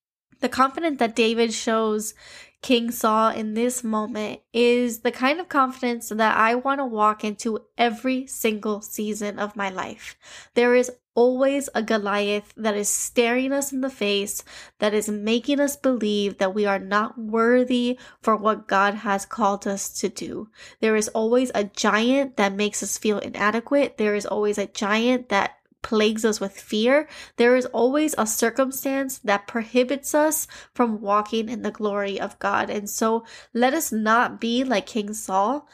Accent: American